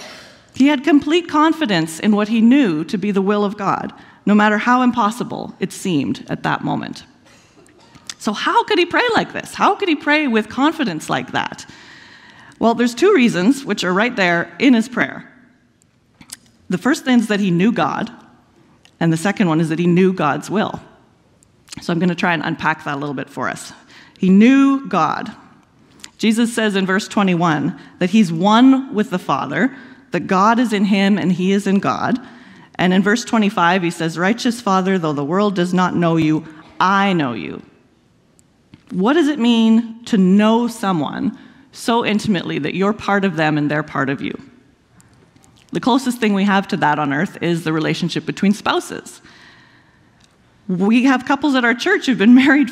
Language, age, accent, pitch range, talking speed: English, 40-59, American, 175-245 Hz, 185 wpm